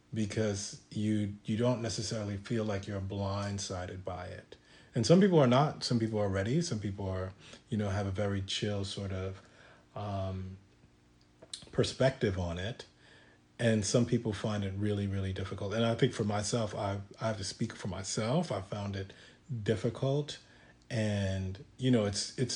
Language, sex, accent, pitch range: English, male, American, 95-115 Hz